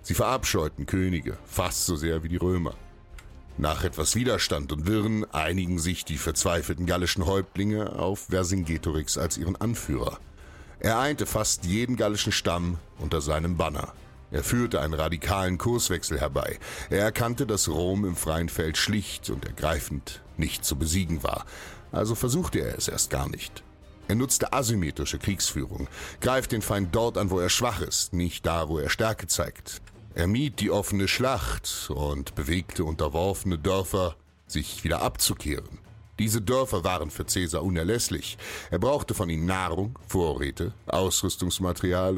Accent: German